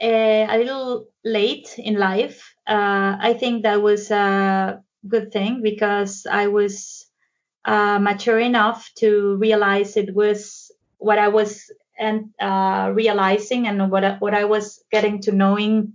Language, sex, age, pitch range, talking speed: English, female, 20-39, 200-225 Hz, 145 wpm